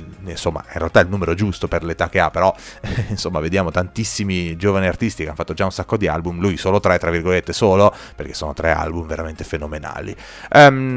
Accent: native